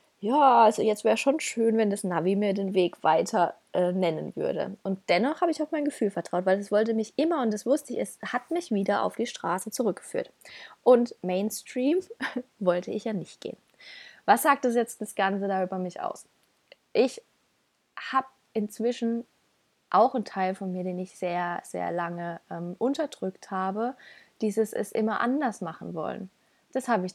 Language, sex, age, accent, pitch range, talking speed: German, female, 20-39, German, 190-245 Hz, 180 wpm